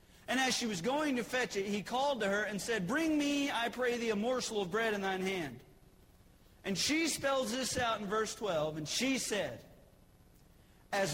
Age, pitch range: 40-59, 195-255 Hz